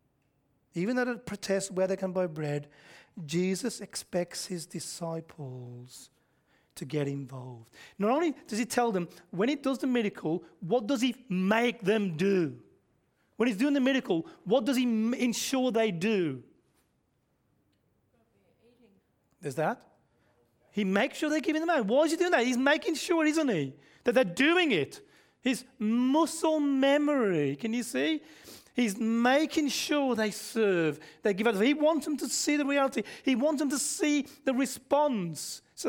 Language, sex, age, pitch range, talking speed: English, male, 30-49, 180-270 Hz, 160 wpm